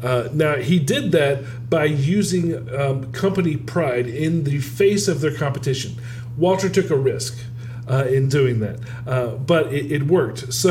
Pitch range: 125-165 Hz